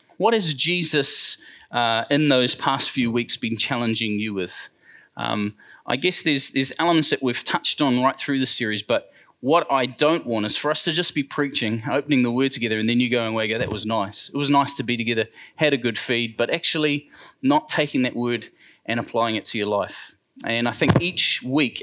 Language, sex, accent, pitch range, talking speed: English, male, Australian, 115-145 Hz, 220 wpm